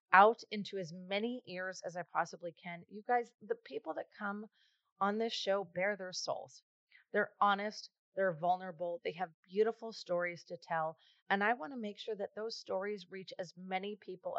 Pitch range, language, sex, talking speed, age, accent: 160-210 Hz, English, female, 185 wpm, 30-49, American